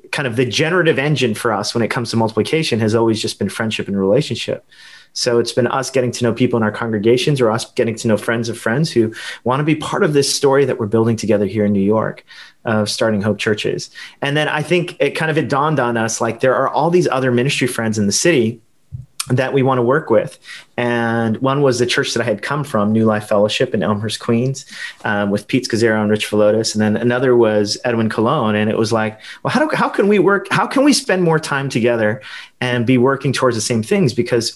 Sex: male